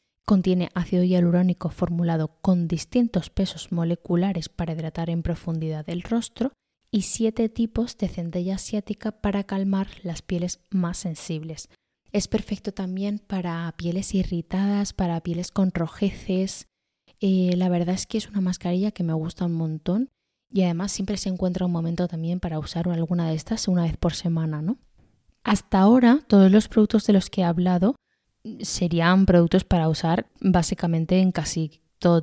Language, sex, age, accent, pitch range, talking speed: Spanish, female, 20-39, Spanish, 170-200 Hz, 160 wpm